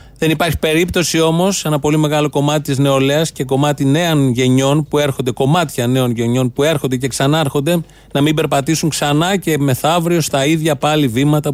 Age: 30-49